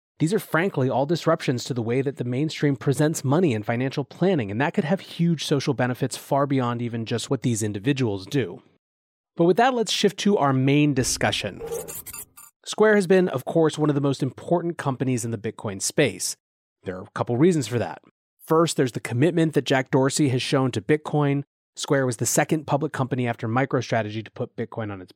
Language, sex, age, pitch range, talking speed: English, male, 30-49, 125-155 Hz, 205 wpm